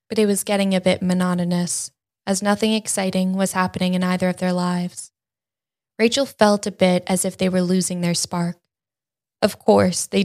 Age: 10-29